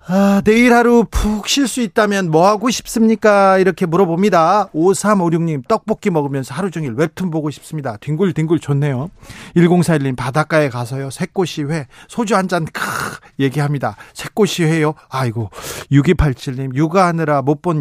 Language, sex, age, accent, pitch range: Korean, male, 40-59, native, 140-200 Hz